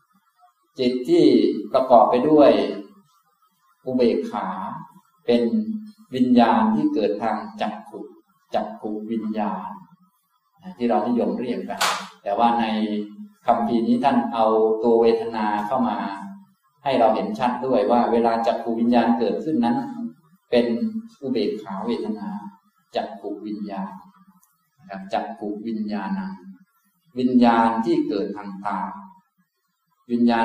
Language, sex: Thai, male